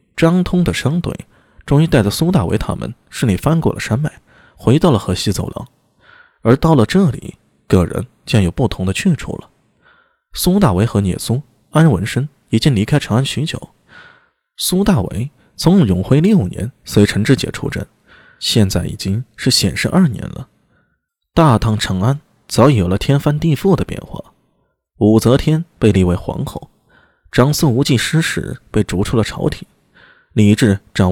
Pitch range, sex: 100-155 Hz, male